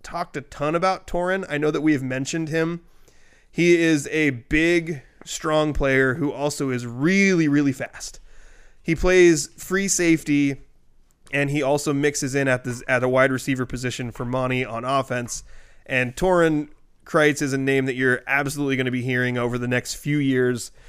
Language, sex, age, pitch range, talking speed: English, male, 20-39, 130-155 Hz, 180 wpm